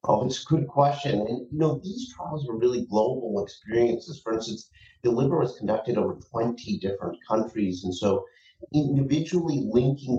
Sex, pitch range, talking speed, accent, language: male, 95-140 Hz, 160 wpm, American, English